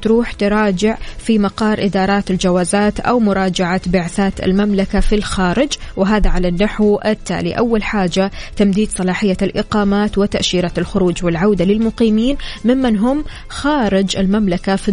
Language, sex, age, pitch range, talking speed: Arabic, female, 20-39, 185-220 Hz, 120 wpm